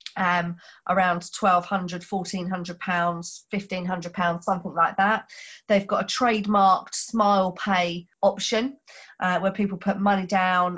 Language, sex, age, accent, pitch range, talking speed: English, female, 30-49, British, 180-225 Hz, 130 wpm